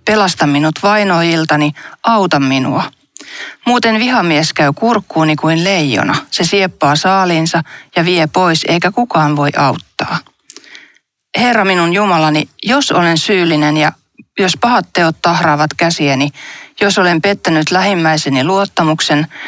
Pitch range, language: 155-205 Hz, Finnish